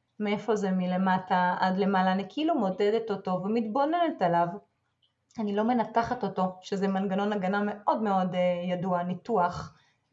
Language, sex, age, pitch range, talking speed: Hebrew, female, 30-49, 190-225 Hz, 130 wpm